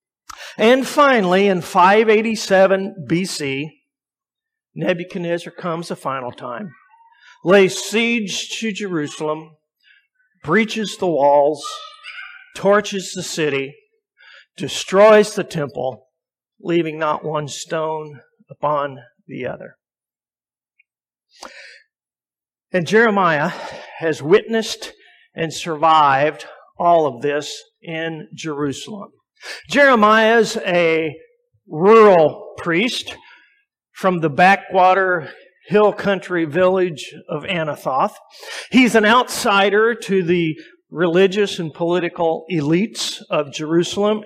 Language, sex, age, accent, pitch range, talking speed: English, male, 50-69, American, 160-220 Hz, 90 wpm